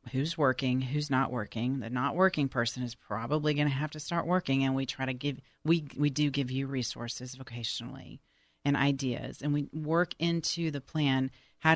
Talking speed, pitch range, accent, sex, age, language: 195 wpm, 130-155 Hz, American, female, 40-59, English